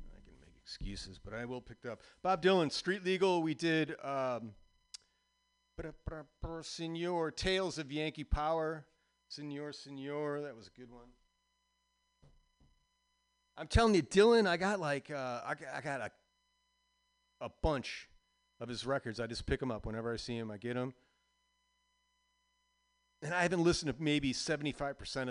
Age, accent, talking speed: 40-59, American, 145 wpm